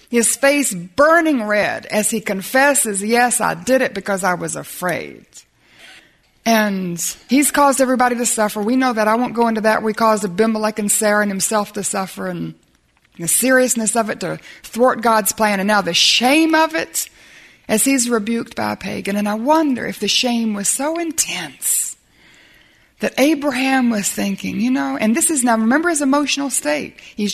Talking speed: 180 wpm